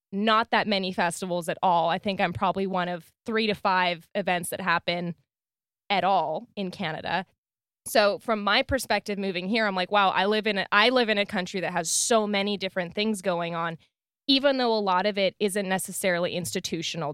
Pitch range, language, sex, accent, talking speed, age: 170-205 Hz, English, female, American, 200 wpm, 20-39